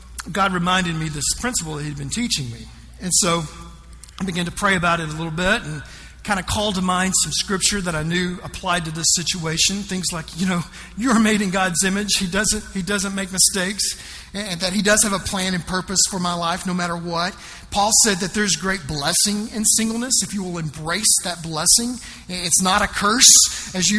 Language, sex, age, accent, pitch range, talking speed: English, male, 40-59, American, 170-215 Hz, 215 wpm